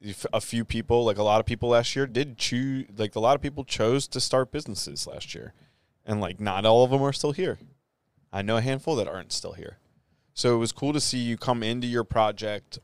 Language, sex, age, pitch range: English, male, 20-39, 100-120 Hz